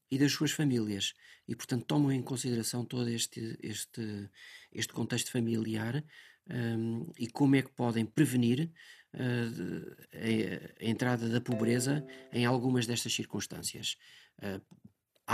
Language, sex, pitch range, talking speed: Portuguese, male, 115-145 Hz, 130 wpm